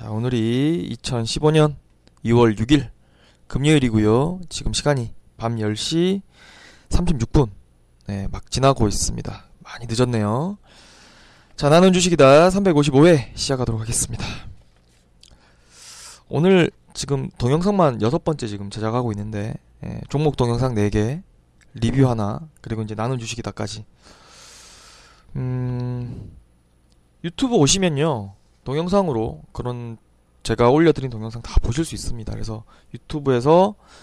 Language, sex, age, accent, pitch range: Korean, male, 20-39, native, 110-155 Hz